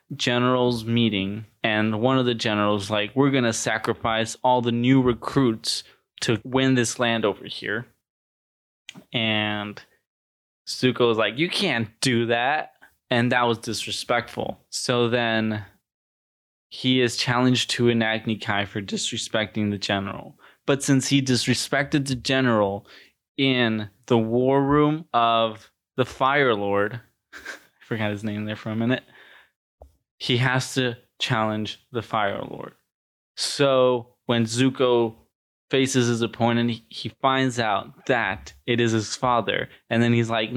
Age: 20-39